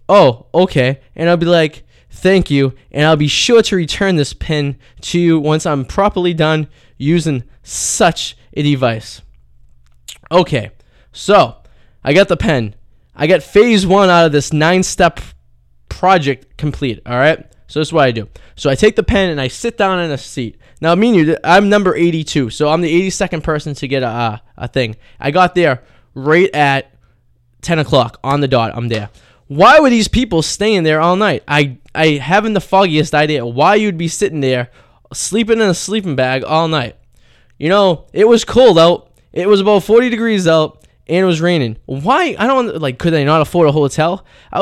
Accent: American